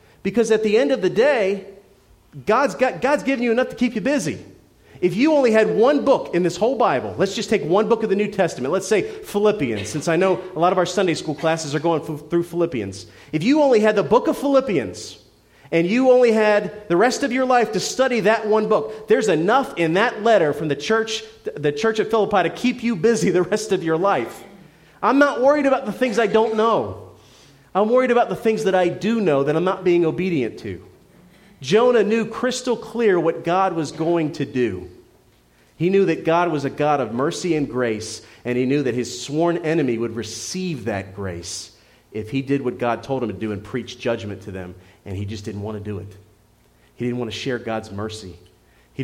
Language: English